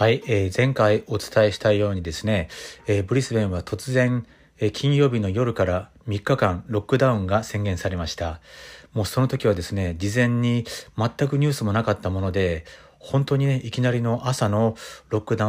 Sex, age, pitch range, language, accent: male, 40-59, 95-120 Hz, Japanese, native